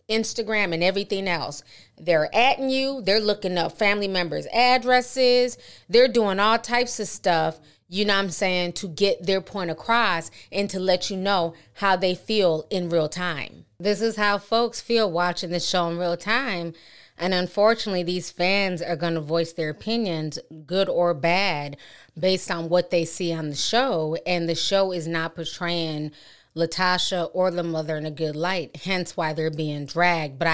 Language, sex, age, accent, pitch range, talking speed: English, female, 30-49, American, 165-205 Hz, 180 wpm